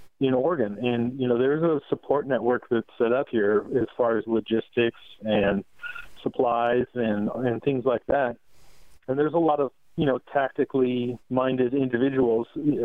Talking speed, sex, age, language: 160 wpm, male, 40-59, English